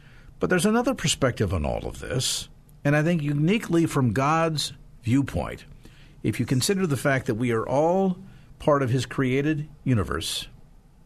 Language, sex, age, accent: English, male, 50-69, American